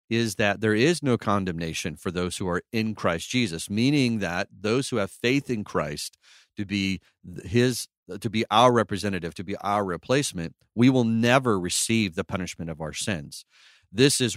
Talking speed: 180 wpm